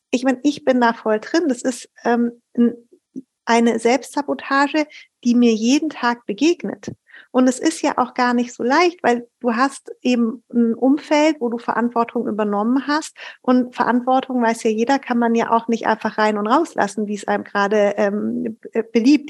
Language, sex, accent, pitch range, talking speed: German, female, German, 225-275 Hz, 175 wpm